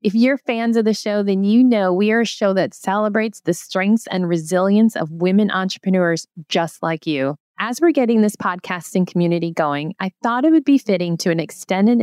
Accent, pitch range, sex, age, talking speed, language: American, 175-225 Hz, female, 30-49, 205 wpm, English